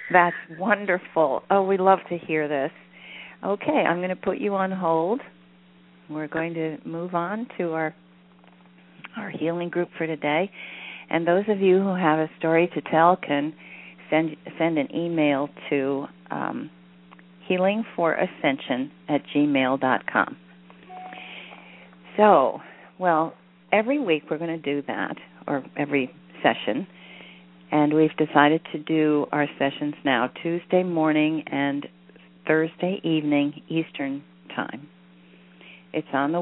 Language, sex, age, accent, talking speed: English, female, 50-69, American, 135 wpm